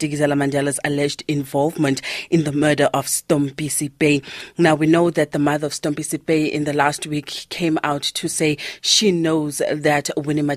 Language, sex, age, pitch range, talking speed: English, female, 30-49, 145-160 Hz, 165 wpm